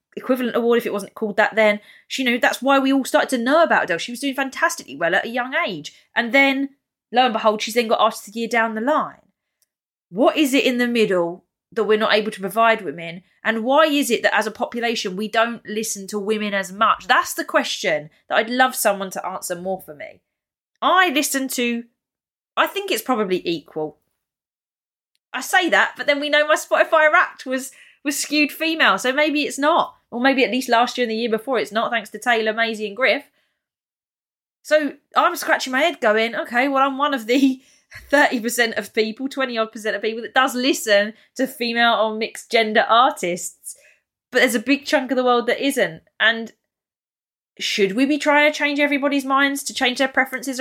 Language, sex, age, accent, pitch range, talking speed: English, female, 20-39, British, 220-280 Hz, 210 wpm